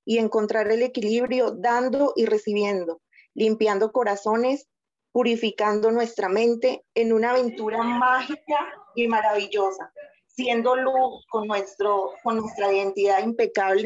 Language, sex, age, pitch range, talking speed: Spanish, female, 30-49, 170-225 Hz, 115 wpm